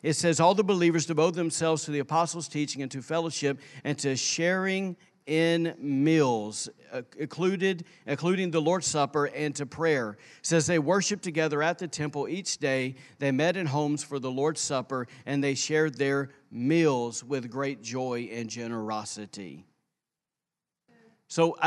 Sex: male